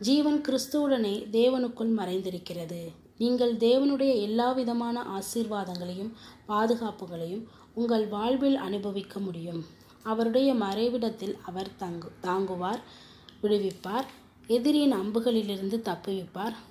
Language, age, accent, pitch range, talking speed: Tamil, 20-39, native, 185-235 Hz, 80 wpm